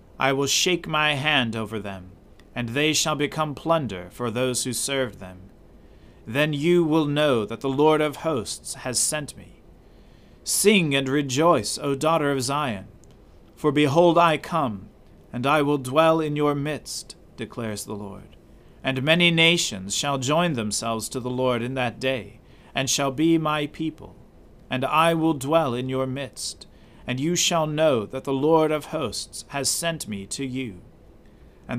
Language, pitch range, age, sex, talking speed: English, 110-150 Hz, 40-59, male, 170 wpm